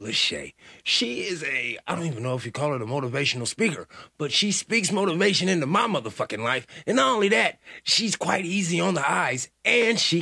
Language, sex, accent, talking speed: English, male, American, 205 wpm